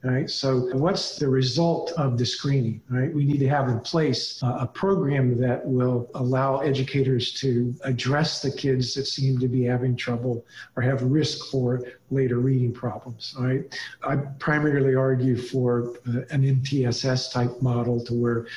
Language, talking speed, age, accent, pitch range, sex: English, 155 wpm, 50-69, American, 125-150 Hz, male